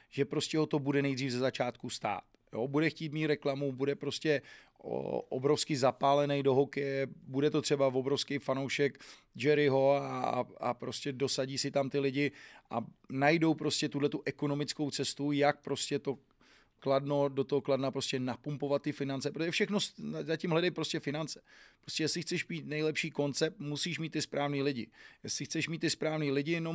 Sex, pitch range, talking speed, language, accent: male, 135-155 Hz, 170 wpm, Czech, native